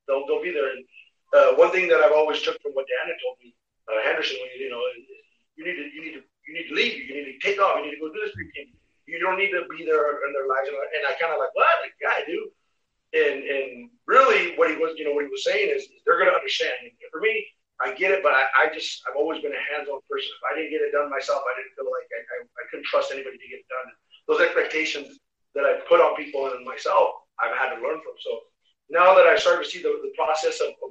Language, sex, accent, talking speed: English, male, American, 270 wpm